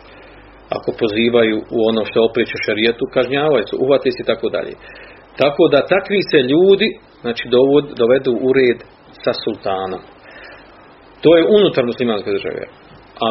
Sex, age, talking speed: male, 40-59, 135 wpm